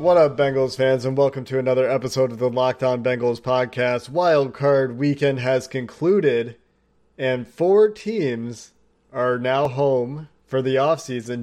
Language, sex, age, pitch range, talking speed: English, male, 30-49, 120-145 Hz, 145 wpm